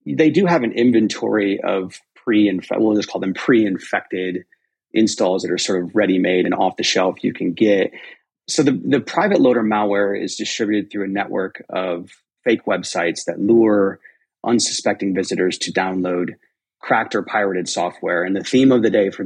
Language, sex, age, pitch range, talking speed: English, male, 30-49, 95-115 Hz, 170 wpm